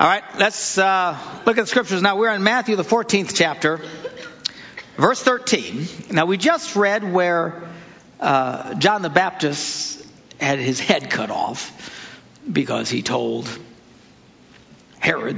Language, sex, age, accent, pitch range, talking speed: English, male, 60-79, American, 165-220 Hz, 135 wpm